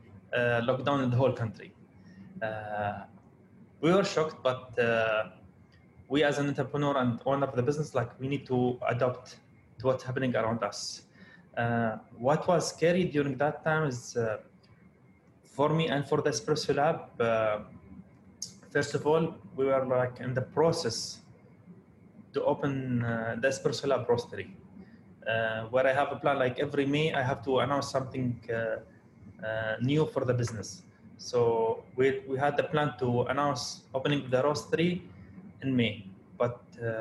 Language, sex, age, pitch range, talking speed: English, male, 20-39, 115-140 Hz, 160 wpm